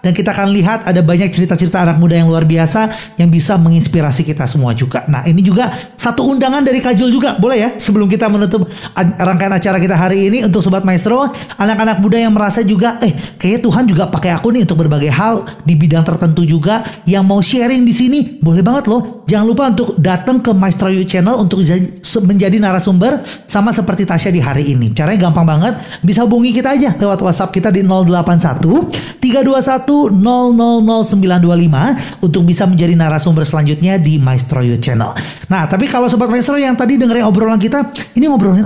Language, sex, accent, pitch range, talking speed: Indonesian, male, native, 175-235 Hz, 180 wpm